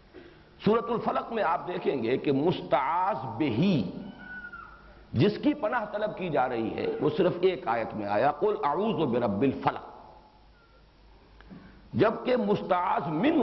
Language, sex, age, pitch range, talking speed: English, male, 50-69, 160-245 Hz, 120 wpm